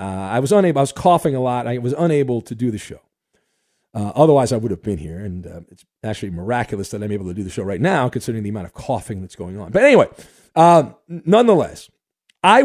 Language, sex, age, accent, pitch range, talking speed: English, male, 40-59, American, 120-175 Hz, 235 wpm